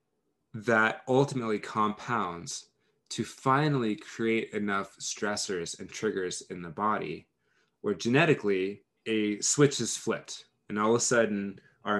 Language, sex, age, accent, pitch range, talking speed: English, male, 20-39, American, 100-135 Hz, 125 wpm